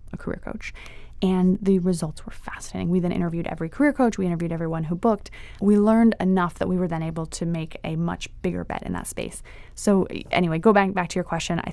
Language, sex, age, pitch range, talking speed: English, female, 20-39, 170-195 Hz, 230 wpm